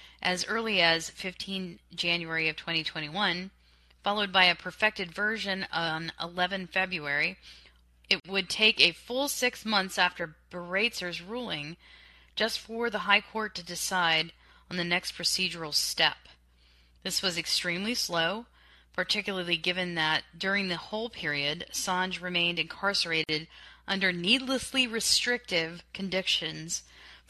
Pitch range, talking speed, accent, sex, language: 170-215 Hz, 120 wpm, American, female, English